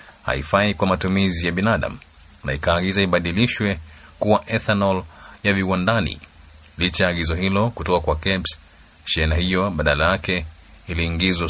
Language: Swahili